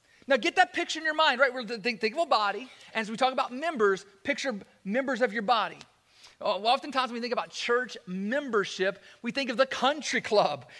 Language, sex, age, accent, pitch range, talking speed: English, male, 40-59, American, 180-260 Hz, 215 wpm